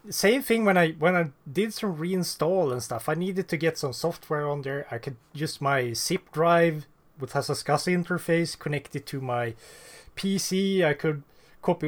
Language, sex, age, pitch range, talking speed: English, male, 30-49, 125-170 Hz, 180 wpm